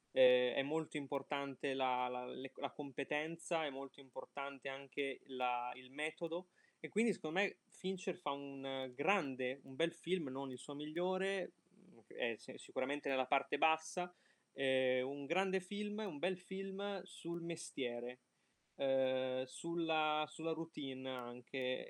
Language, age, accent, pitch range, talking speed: Italian, 20-39, native, 130-170 Hz, 135 wpm